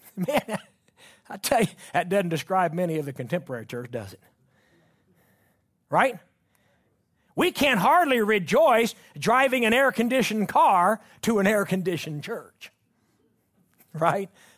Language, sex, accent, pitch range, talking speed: English, male, American, 185-265 Hz, 115 wpm